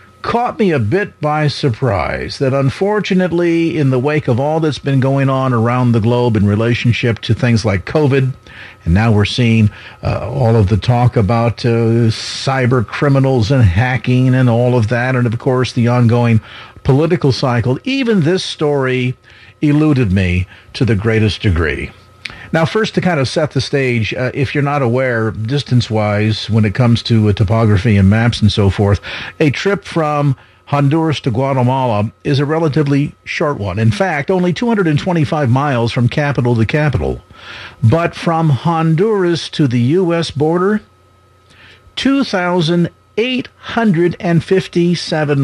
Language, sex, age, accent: English, male, 50-69, American